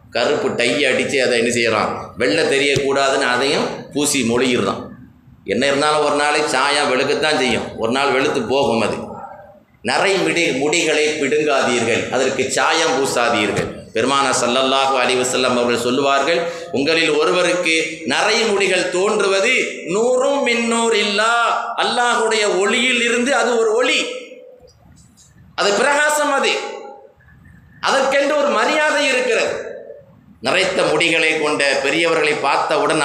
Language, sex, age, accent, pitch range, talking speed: Tamil, male, 30-49, native, 120-200 Hz, 100 wpm